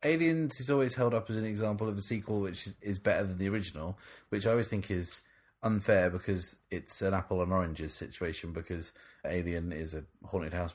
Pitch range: 85-105 Hz